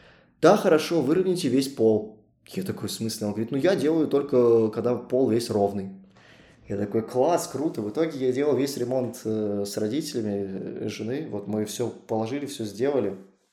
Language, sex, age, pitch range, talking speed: Russian, male, 20-39, 105-130 Hz, 175 wpm